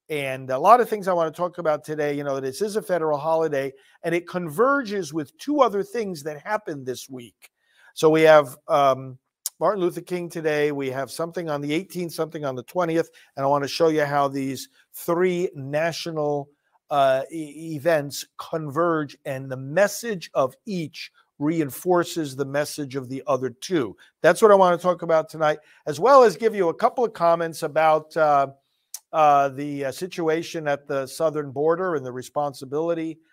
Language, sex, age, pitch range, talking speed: English, male, 50-69, 135-170 Hz, 185 wpm